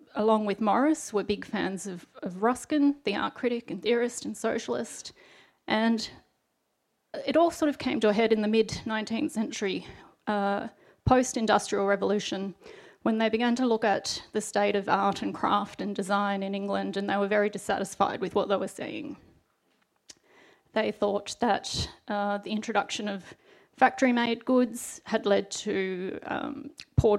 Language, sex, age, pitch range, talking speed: English, female, 30-49, 205-245 Hz, 160 wpm